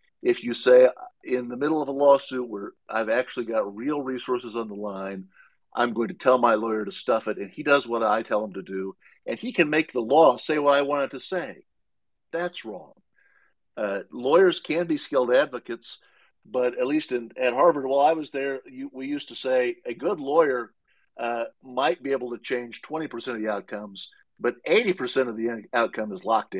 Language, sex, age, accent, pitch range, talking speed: English, male, 50-69, American, 115-145 Hz, 210 wpm